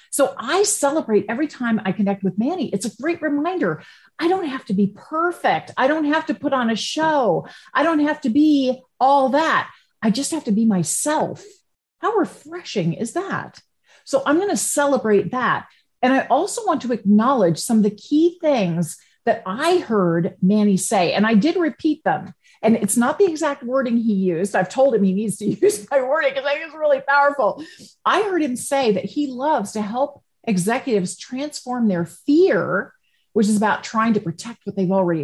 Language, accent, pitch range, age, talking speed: English, American, 205-295 Hz, 50-69, 200 wpm